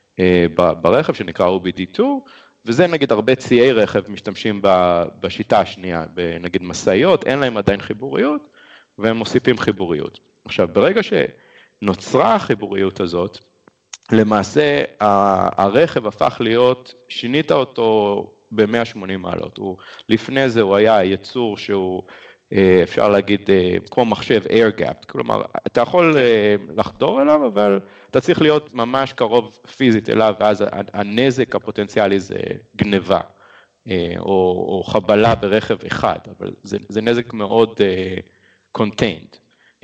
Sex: male